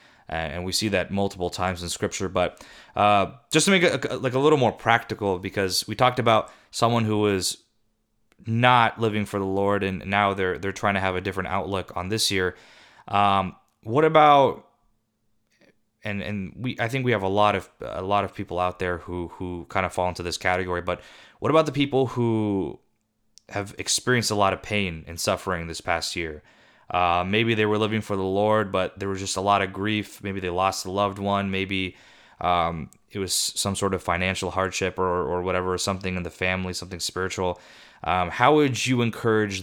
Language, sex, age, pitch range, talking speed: English, male, 20-39, 90-110 Hz, 200 wpm